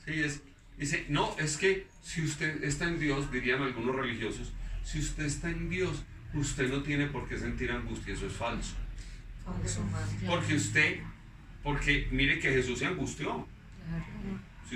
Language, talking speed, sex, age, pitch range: Spanish, 155 wpm, male, 40-59, 110-145 Hz